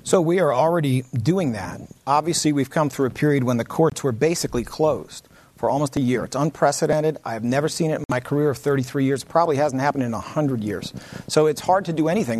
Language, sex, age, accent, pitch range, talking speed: English, male, 40-59, American, 130-160 Hz, 225 wpm